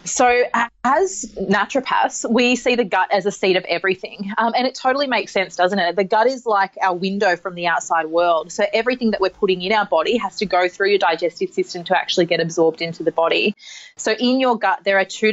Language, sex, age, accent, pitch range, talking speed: English, female, 30-49, Australian, 180-215 Hz, 230 wpm